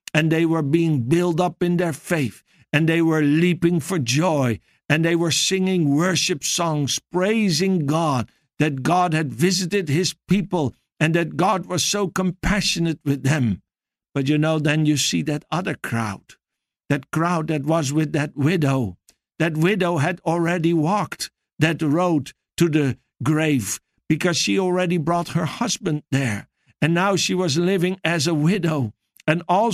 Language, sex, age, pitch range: English, male, 60-79, 150-180 Hz